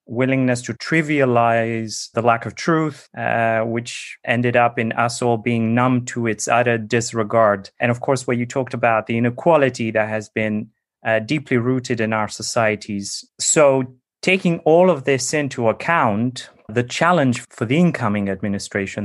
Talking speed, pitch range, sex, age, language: 160 wpm, 110-135 Hz, male, 30-49, English